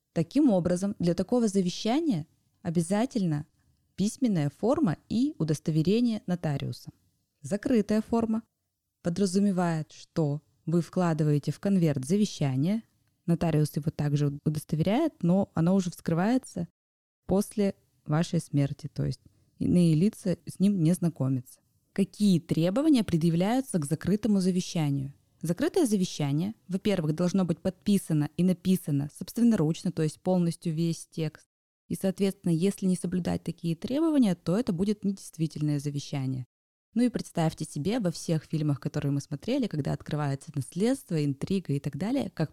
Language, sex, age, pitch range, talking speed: Russian, female, 20-39, 145-200 Hz, 125 wpm